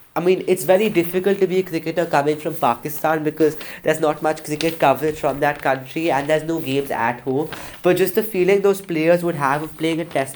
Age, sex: 20-39, male